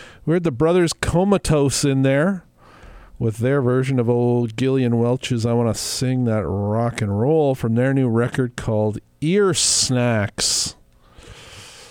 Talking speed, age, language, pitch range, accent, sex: 145 wpm, 50-69, English, 110-150 Hz, American, male